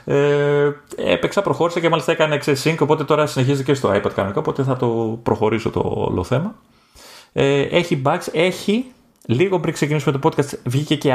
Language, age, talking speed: Greek, 30-49, 170 wpm